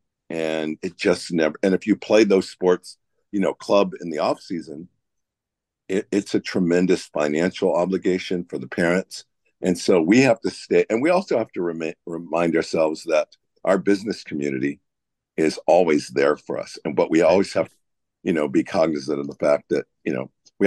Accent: American